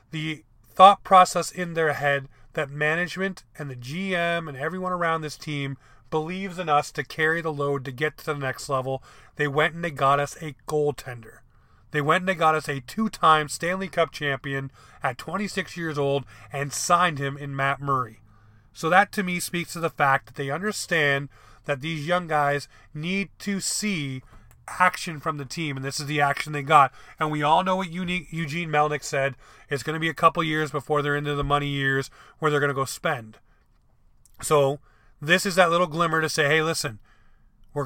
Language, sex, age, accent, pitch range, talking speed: English, male, 30-49, American, 135-165 Hz, 200 wpm